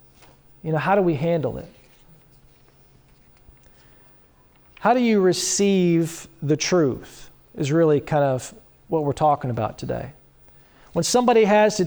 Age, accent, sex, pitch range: 40-59, American, male, 145-175 Hz